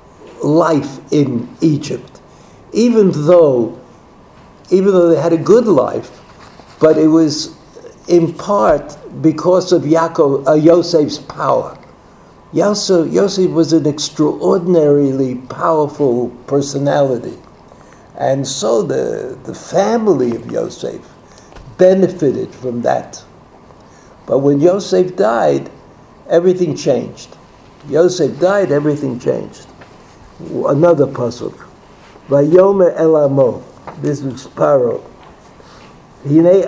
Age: 60-79